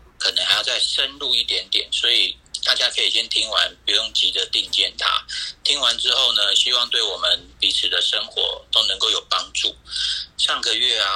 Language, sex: Chinese, male